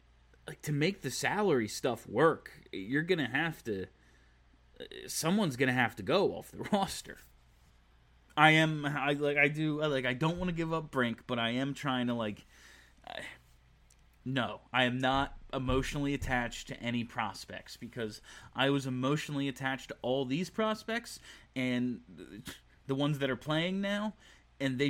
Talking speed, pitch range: 165 wpm, 115-160 Hz